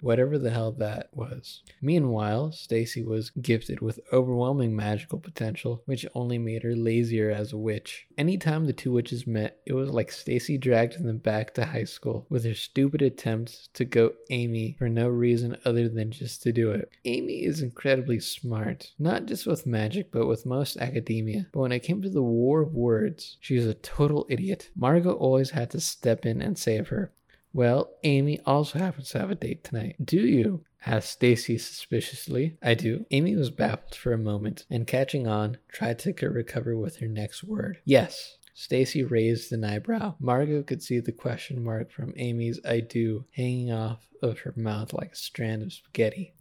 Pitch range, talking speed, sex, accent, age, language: 115-140 Hz, 185 wpm, male, American, 20-39, English